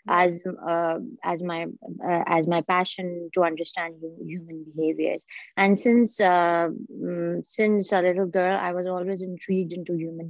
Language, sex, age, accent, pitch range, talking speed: English, female, 20-39, Indian, 170-200 Hz, 145 wpm